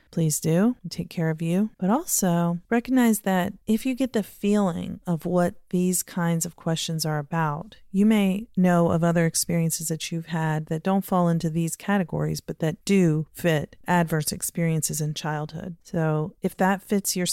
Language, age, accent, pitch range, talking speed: English, 40-59, American, 155-185 Hz, 175 wpm